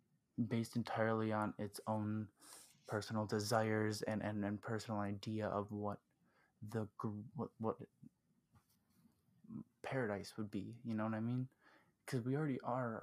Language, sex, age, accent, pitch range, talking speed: English, male, 20-39, American, 105-115 Hz, 135 wpm